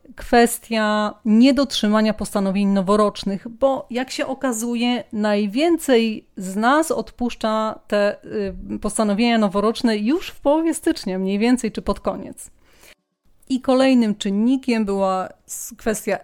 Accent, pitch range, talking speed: native, 205-250 Hz, 105 wpm